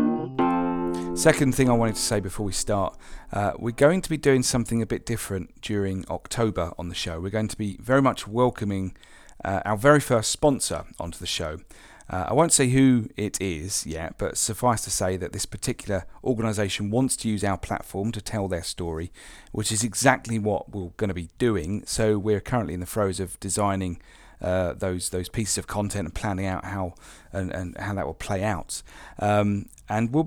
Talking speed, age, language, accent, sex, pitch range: 200 wpm, 40-59, English, British, male, 95-125 Hz